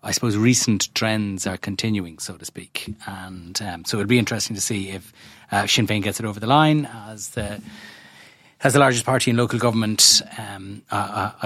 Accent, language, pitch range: Irish, English, 105-125 Hz